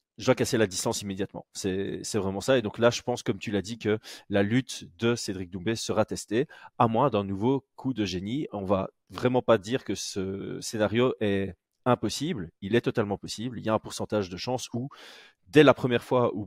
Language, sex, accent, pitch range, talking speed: French, male, French, 100-120 Hz, 220 wpm